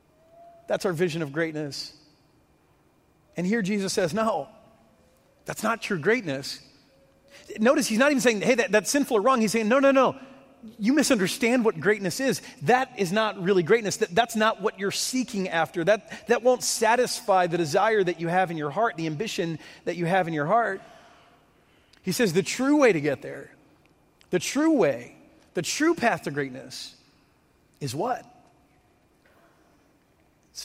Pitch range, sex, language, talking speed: 155-220 Hz, male, English, 165 wpm